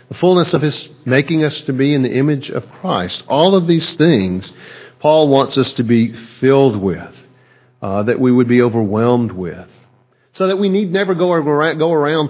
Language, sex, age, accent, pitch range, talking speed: English, male, 50-69, American, 115-150 Hz, 185 wpm